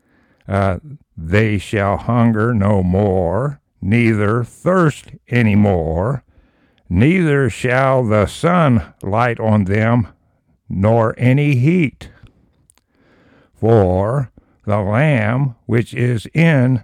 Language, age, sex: English, 60-79, male